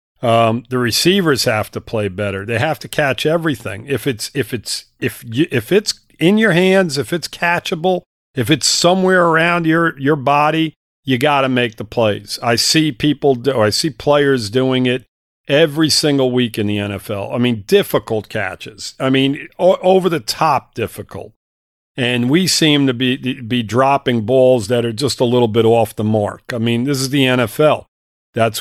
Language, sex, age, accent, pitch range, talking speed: English, male, 50-69, American, 110-140 Hz, 190 wpm